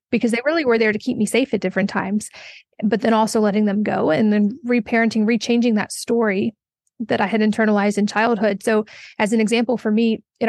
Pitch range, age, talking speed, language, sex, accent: 210-235 Hz, 30-49, 210 wpm, English, female, American